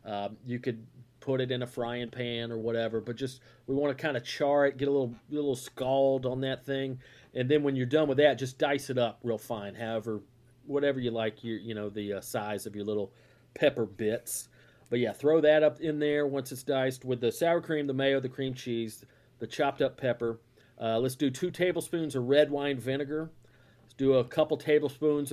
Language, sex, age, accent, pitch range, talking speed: English, male, 40-59, American, 115-145 Hz, 220 wpm